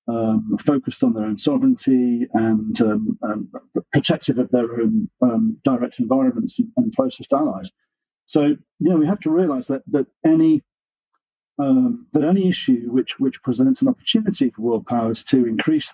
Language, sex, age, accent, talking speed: English, male, 40-59, British, 160 wpm